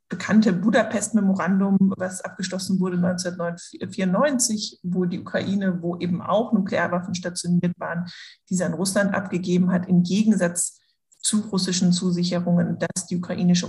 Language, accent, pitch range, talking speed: German, German, 180-205 Hz, 125 wpm